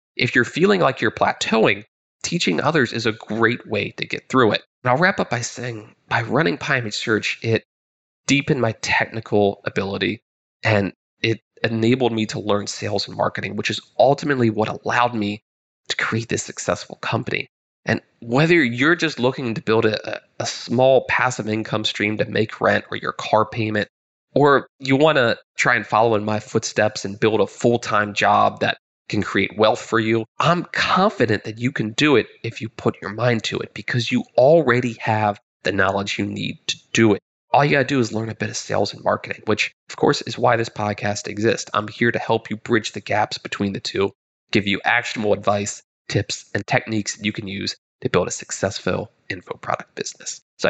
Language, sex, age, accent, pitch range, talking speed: English, male, 20-39, American, 105-125 Hz, 200 wpm